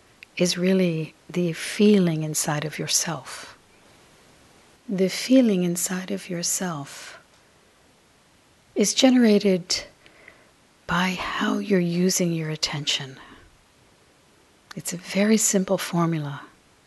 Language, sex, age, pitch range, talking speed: English, female, 50-69, 165-190 Hz, 90 wpm